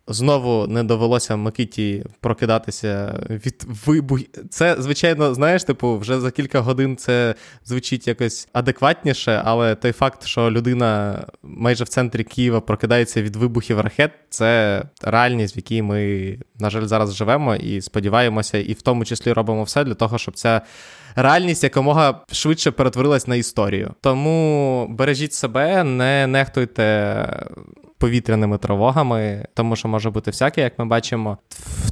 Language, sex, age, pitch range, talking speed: Ukrainian, male, 20-39, 110-130 Hz, 140 wpm